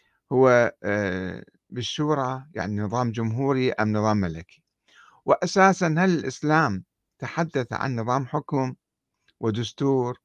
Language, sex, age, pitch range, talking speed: Arabic, male, 50-69, 105-150 Hz, 95 wpm